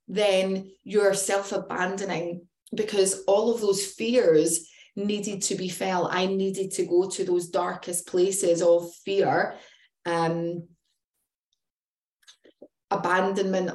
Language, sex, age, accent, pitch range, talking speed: English, female, 20-39, British, 170-195 Hz, 105 wpm